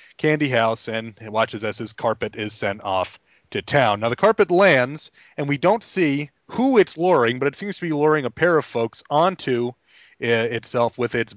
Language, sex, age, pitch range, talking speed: English, male, 30-49, 115-150 Hz, 195 wpm